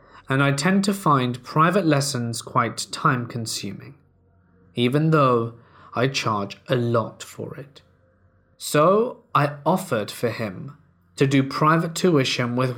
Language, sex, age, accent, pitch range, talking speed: English, male, 20-39, British, 110-145 Hz, 130 wpm